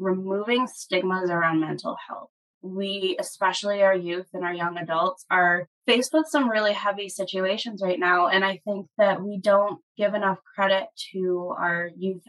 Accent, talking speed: American, 165 wpm